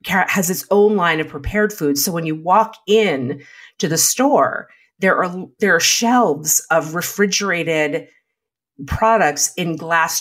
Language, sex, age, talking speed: English, female, 40-59, 145 wpm